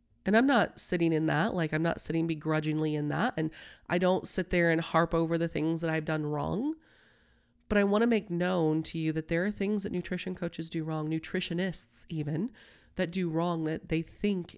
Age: 30-49